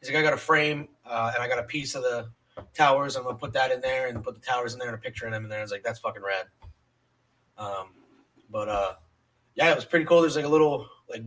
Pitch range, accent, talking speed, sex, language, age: 115-170 Hz, American, 280 wpm, male, English, 20-39